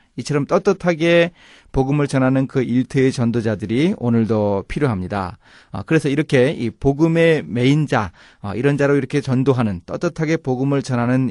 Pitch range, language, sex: 115-160 Hz, Korean, male